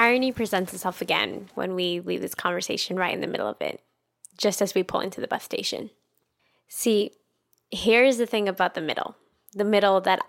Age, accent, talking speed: 10-29, American, 190 wpm